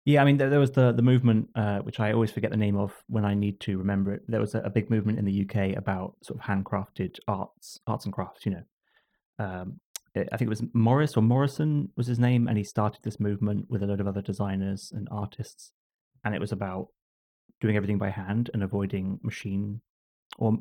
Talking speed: 230 wpm